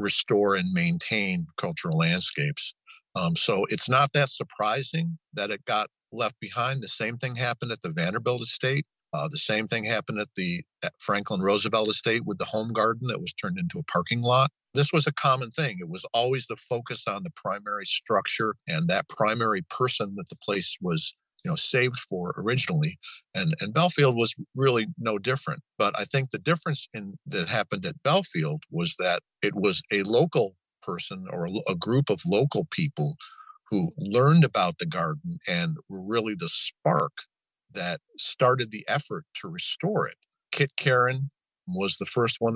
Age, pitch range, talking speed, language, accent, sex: 50-69, 115-165 Hz, 175 wpm, English, American, male